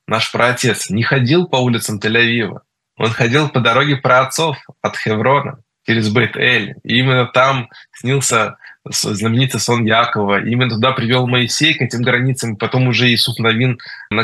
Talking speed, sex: 150 wpm, male